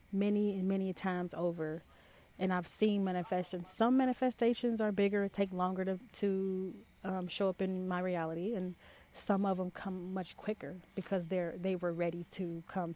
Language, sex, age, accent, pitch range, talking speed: English, female, 20-39, American, 175-195 Hz, 170 wpm